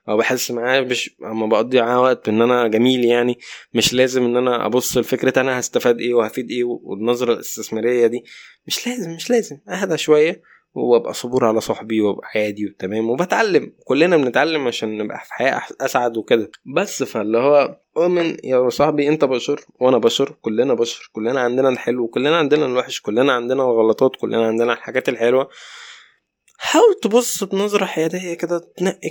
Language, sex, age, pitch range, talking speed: Arabic, male, 20-39, 115-155 Hz, 160 wpm